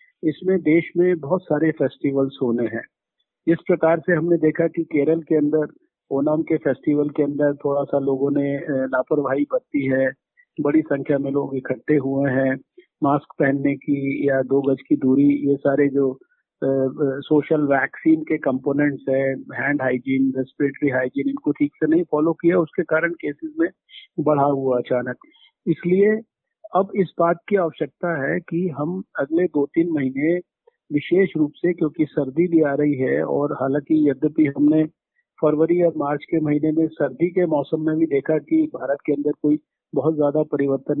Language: Hindi